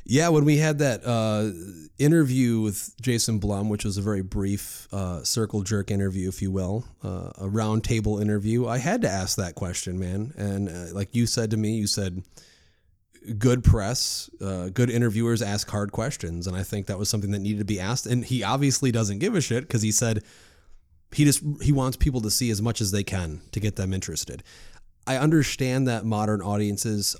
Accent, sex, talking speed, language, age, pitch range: American, male, 205 wpm, English, 30-49, 100-130 Hz